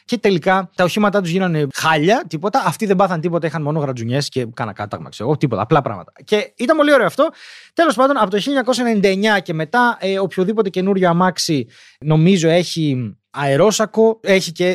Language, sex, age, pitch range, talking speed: Greek, male, 20-39, 155-225 Hz, 165 wpm